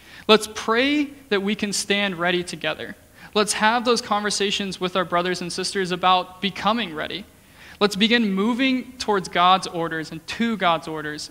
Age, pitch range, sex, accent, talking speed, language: 20-39, 165-200 Hz, male, American, 160 wpm, English